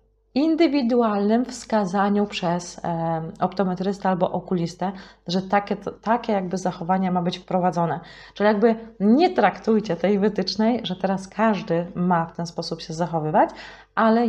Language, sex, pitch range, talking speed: Polish, female, 185-250 Hz, 125 wpm